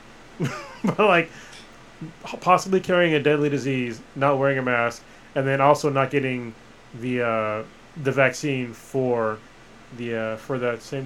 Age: 20-39